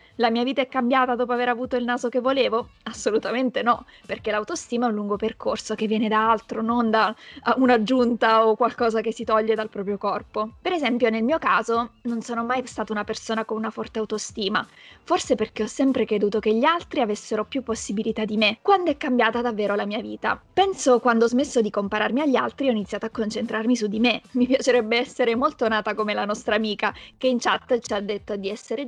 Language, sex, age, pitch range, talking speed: Italian, female, 20-39, 215-255 Hz, 210 wpm